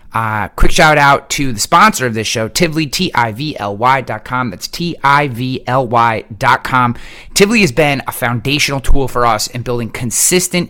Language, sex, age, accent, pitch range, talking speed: English, male, 30-49, American, 110-140 Hz, 140 wpm